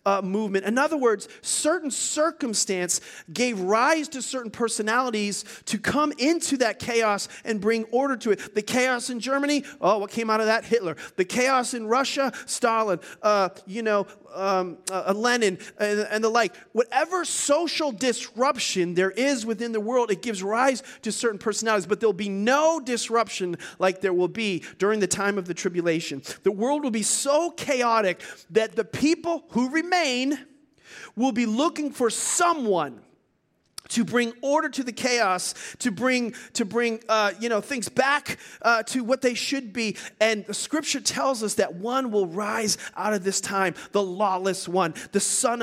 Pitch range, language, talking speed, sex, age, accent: 205-260 Hz, English, 175 wpm, male, 40-59, American